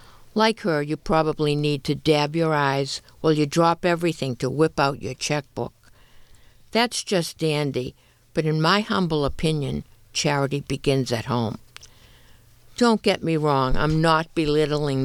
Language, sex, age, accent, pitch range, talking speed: English, female, 60-79, American, 135-165 Hz, 150 wpm